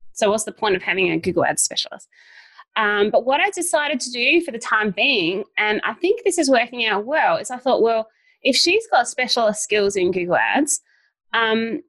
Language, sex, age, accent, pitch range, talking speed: English, female, 20-39, Australian, 210-265 Hz, 210 wpm